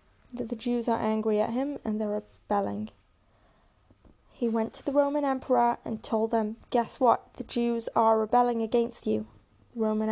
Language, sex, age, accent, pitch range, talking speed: English, female, 10-29, British, 215-250 Hz, 170 wpm